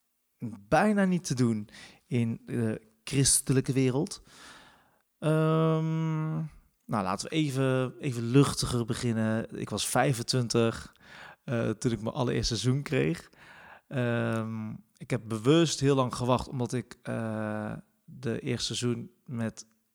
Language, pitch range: Dutch, 110-130 Hz